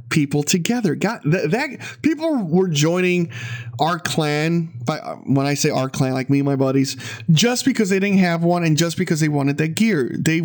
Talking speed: 195 wpm